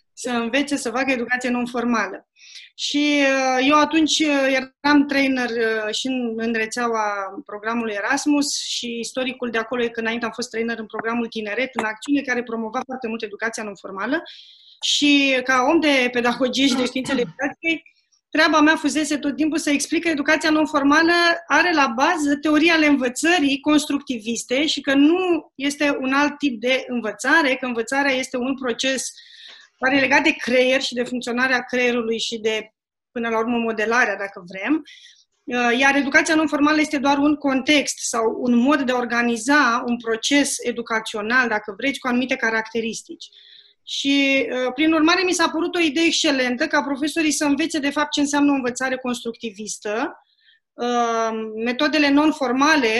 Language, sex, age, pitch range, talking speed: Romanian, female, 20-39, 235-295 Hz, 155 wpm